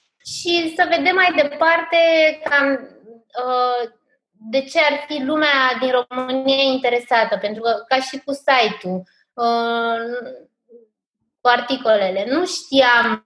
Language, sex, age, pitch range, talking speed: Romanian, female, 20-39, 190-265 Hz, 120 wpm